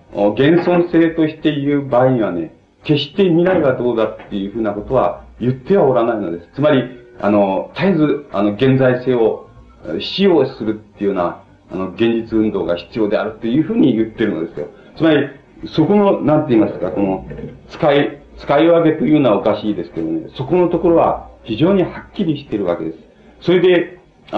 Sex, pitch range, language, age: male, 110-170 Hz, Japanese, 40-59